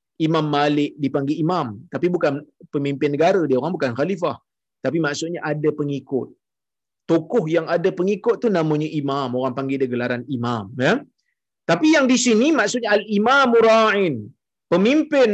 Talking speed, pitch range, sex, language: 140 wpm, 155-255 Hz, male, Malayalam